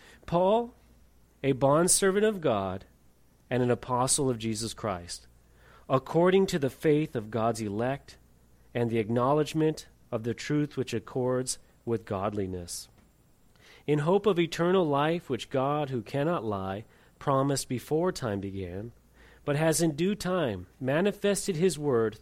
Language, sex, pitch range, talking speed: English, male, 100-150 Hz, 135 wpm